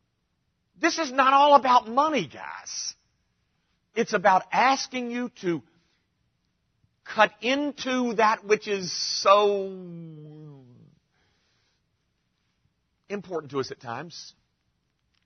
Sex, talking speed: male, 90 wpm